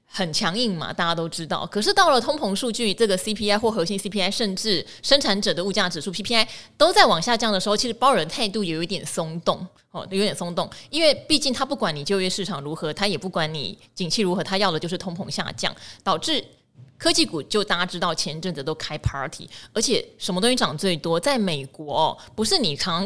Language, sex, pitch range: Chinese, female, 170-225 Hz